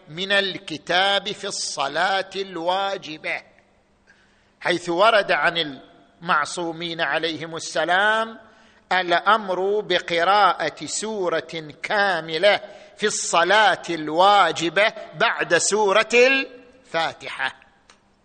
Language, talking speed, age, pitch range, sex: Arabic, 70 wpm, 50-69, 195-240 Hz, male